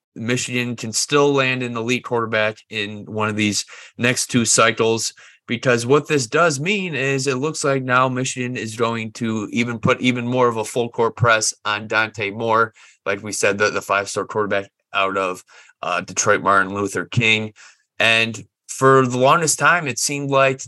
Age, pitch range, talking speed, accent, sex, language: 20-39, 110-135 Hz, 185 wpm, American, male, English